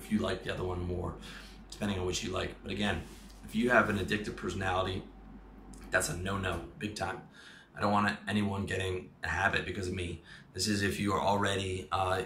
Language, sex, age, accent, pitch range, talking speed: English, male, 20-39, American, 90-110 Hz, 195 wpm